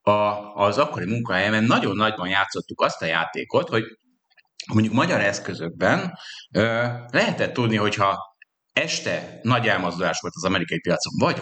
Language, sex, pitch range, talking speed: Hungarian, male, 100-140 Hz, 135 wpm